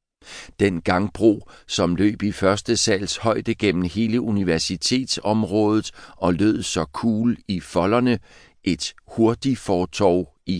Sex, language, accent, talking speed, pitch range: male, Danish, native, 115 wpm, 95-125 Hz